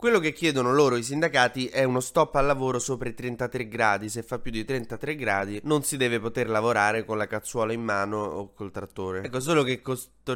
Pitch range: 110-140 Hz